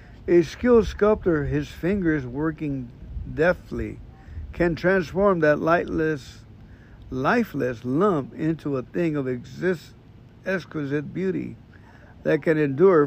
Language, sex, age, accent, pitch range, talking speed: English, male, 60-79, American, 120-170 Hz, 95 wpm